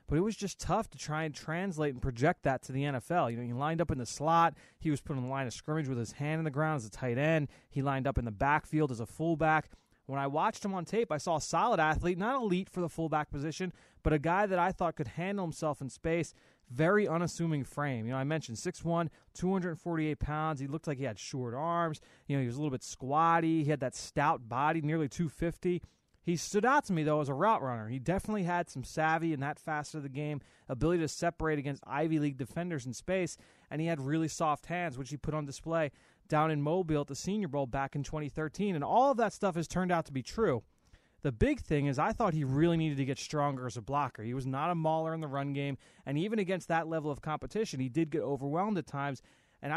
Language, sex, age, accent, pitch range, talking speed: English, male, 30-49, American, 140-170 Hz, 255 wpm